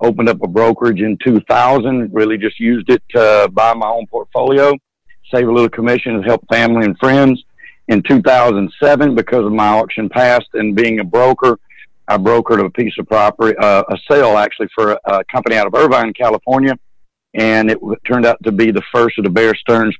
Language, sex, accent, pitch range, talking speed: English, male, American, 105-120 Hz, 195 wpm